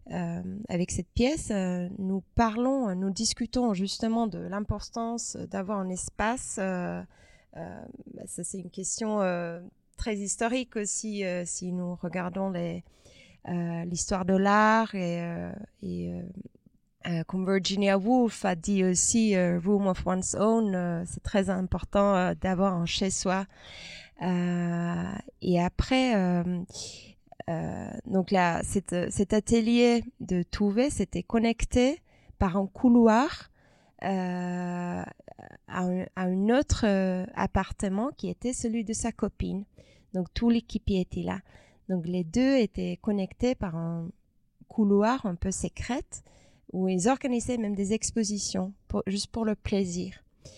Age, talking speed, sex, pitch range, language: 20-39, 130 wpm, female, 180-220 Hz, French